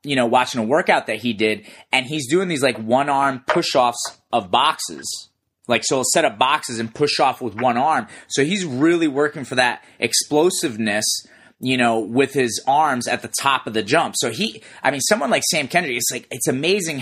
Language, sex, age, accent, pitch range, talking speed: English, male, 30-49, American, 120-155 Hz, 215 wpm